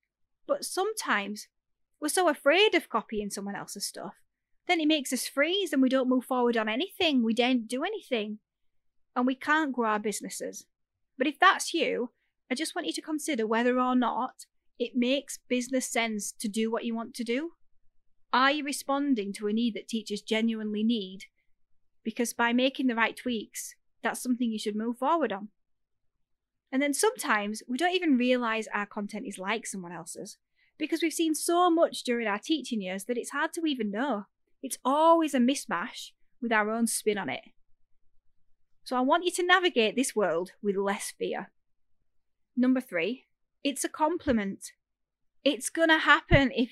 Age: 30-49